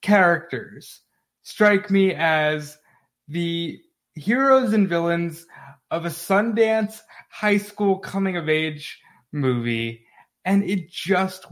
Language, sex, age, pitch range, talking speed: English, male, 20-39, 140-180 Hz, 95 wpm